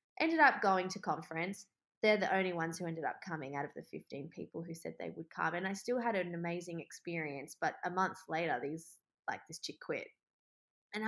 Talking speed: 215 wpm